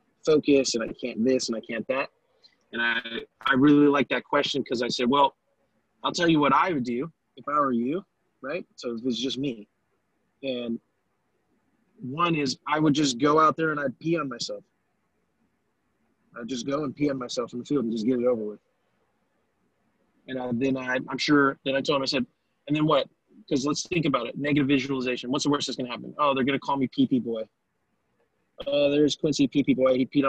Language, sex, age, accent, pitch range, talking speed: English, male, 20-39, American, 130-150 Hz, 220 wpm